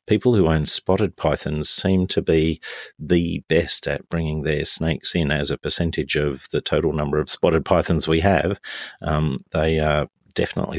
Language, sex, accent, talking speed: English, male, Australian, 180 wpm